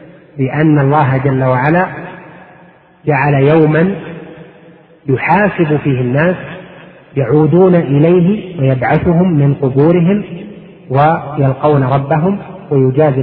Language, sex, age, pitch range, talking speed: Arabic, male, 40-59, 130-165 Hz, 75 wpm